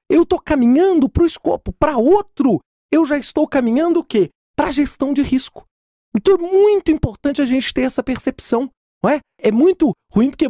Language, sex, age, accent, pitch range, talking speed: Portuguese, male, 40-59, Brazilian, 215-310 Hz, 190 wpm